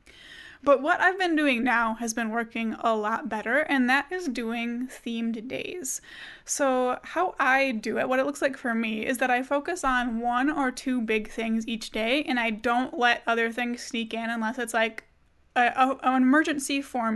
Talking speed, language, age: 190 wpm, English, 20-39